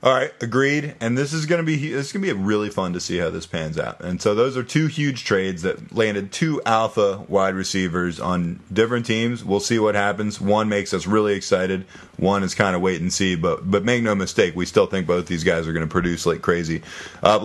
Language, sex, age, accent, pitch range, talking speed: English, male, 20-39, American, 95-115 Hz, 245 wpm